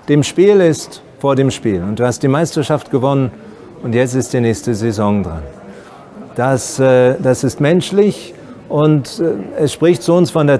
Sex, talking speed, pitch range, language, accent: male, 170 wpm, 125-160 Hz, German, German